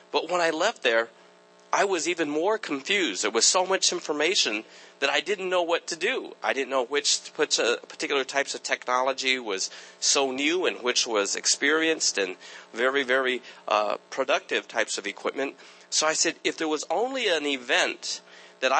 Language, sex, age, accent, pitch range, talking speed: English, male, 40-59, American, 115-155 Hz, 175 wpm